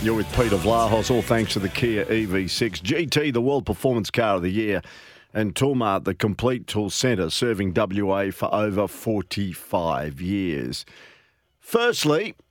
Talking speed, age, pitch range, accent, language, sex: 150 wpm, 50-69, 100-130 Hz, Australian, English, male